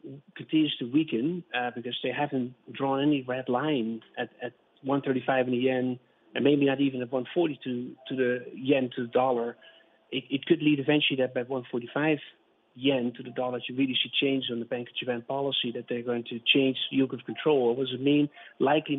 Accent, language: Dutch, English